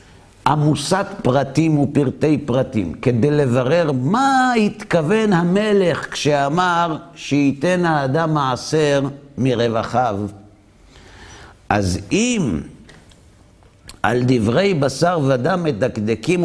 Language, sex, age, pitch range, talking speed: Hebrew, male, 60-79, 105-155 Hz, 75 wpm